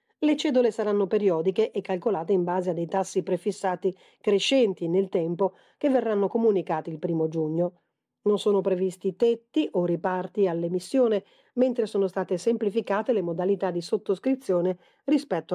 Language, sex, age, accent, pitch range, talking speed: Italian, female, 40-59, native, 180-230 Hz, 145 wpm